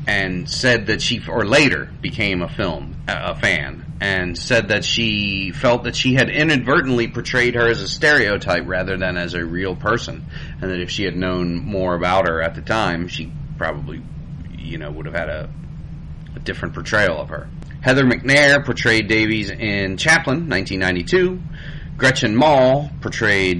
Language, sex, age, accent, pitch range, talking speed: English, male, 30-49, American, 90-120 Hz, 170 wpm